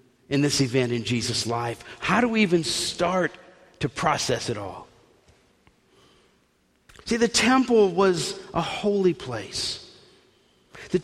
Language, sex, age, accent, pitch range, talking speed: English, male, 50-69, American, 130-185 Hz, 125 wpm